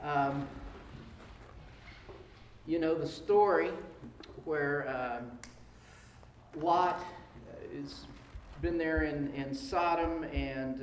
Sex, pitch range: male, 135-160 Hz